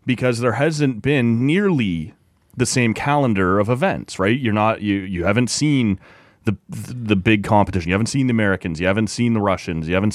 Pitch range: 95-125 Hz